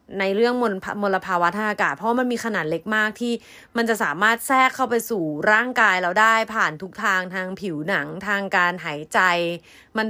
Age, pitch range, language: 20-39, 185-250 Hz, Thai